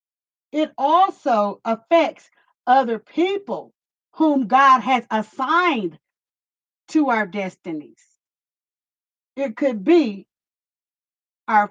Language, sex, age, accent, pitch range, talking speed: English, female, 50-69, American, 230-315 Hz, 80 wpm